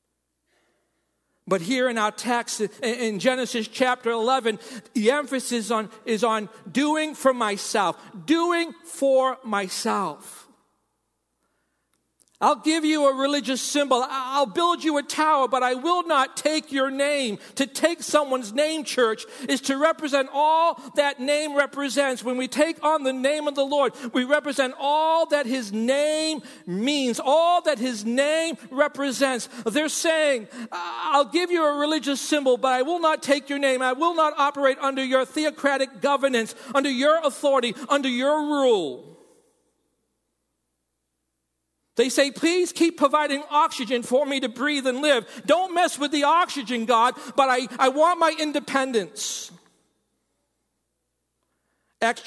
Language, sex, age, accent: English, male, 50-69, American